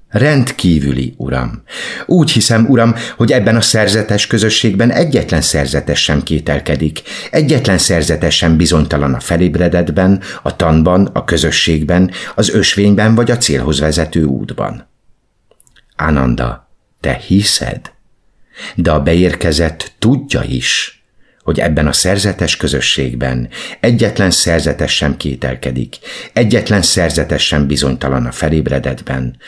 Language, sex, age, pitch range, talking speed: Hungarian, male, 50-69, 75-100 Hz, 110 wpm